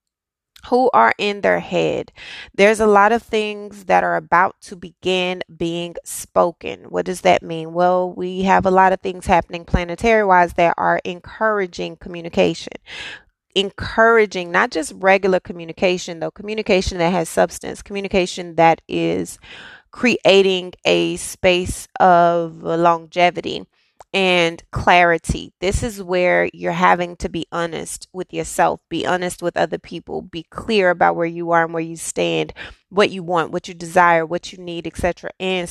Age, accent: 20-39, American